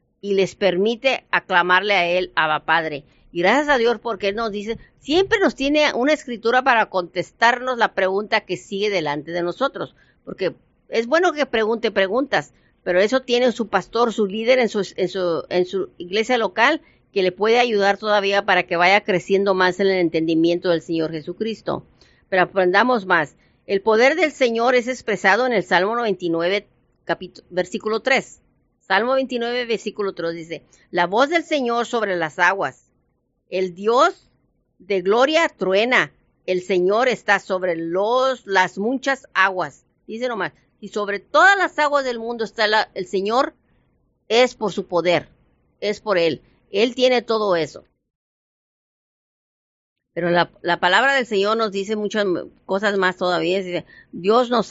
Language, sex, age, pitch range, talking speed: Spanish, female, 40-59, 180-235 Hz, 160 wpm